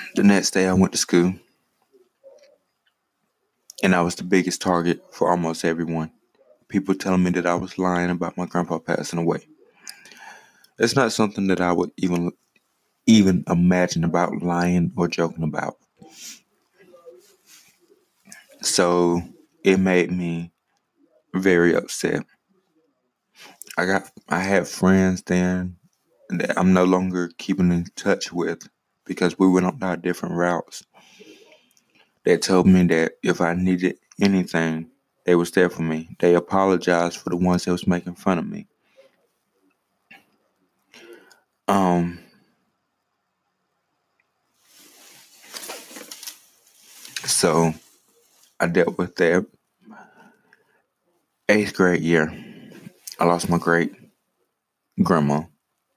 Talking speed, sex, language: 115 wpm, male, English